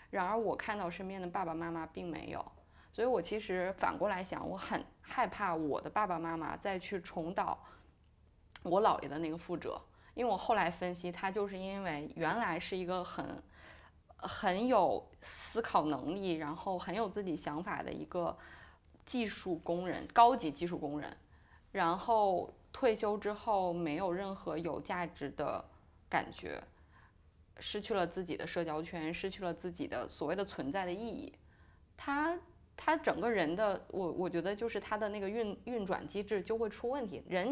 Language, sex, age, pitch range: Chinese, female, 20-39, 160-210 Hz